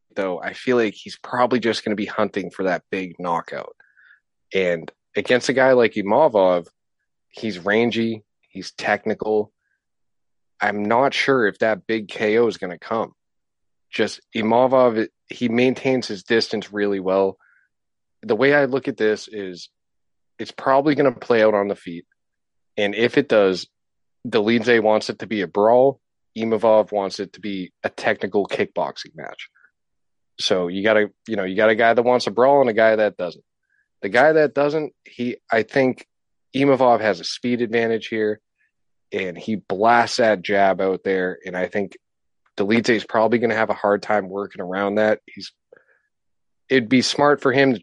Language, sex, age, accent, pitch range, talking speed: English, male, 30-49, American, 100-125 Hz, 175 wpm